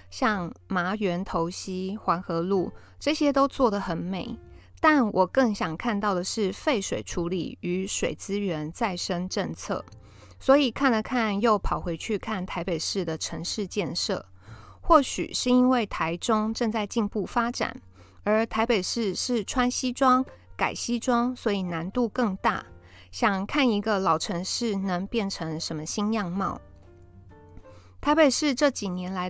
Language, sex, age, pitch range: Chinese, female, 20-39, 180-240 Hz